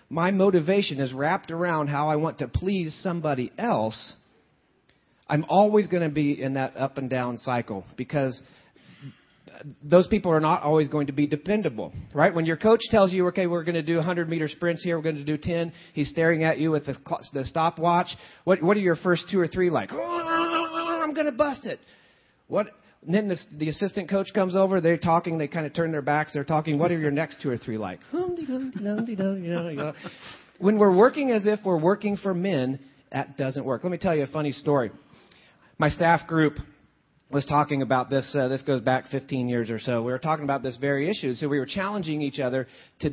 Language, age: English, 40-59